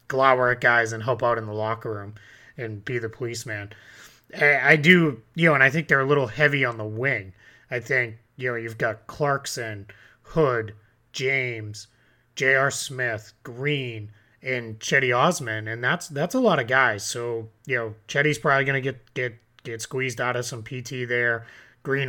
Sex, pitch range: male, 115-135 Hz